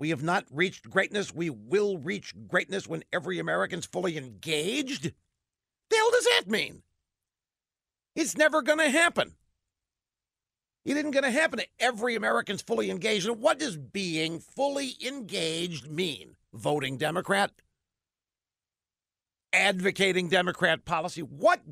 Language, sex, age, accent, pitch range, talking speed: English, male, 50-69, American, 135-200 Hz, 125 wpm